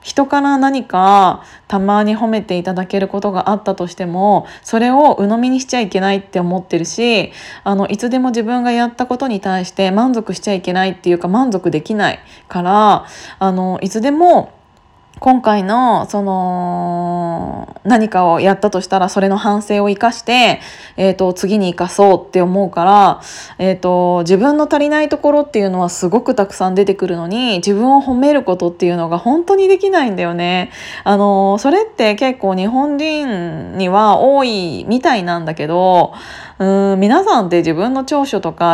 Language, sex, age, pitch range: Japanese, female, 20-39, 185-250 Hz